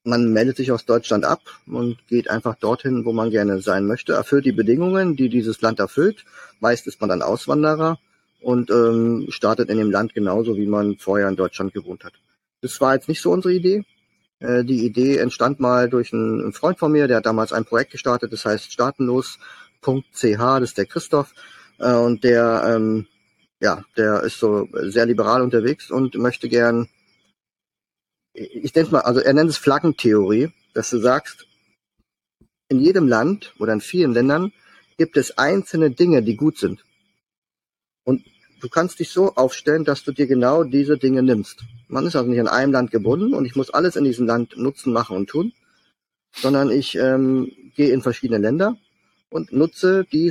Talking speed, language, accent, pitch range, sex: 180 wpm, German, German, 115-145 Hz, male